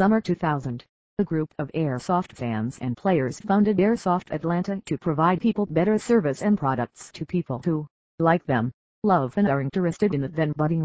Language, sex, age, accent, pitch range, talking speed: English, female, 50-69, American, 140-185 Hz, 170 wpm